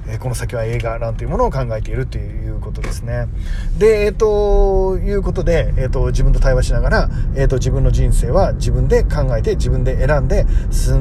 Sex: male